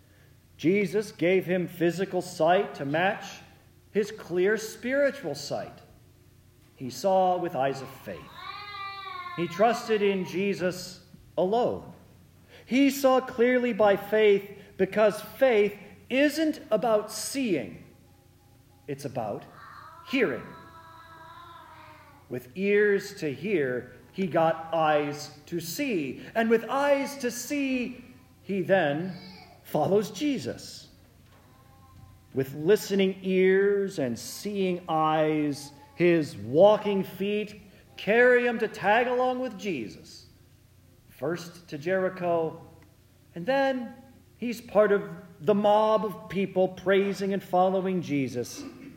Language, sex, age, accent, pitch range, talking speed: English, male, 40-59, American, 145-215 Hz, 105 wpm